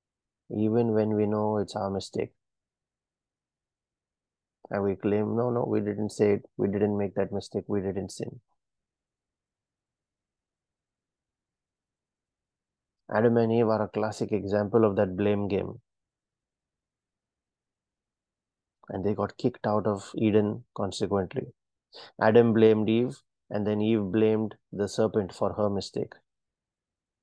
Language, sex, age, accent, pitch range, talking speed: English, male, 30-49, Indian, 105-115 Hz, 120 wpm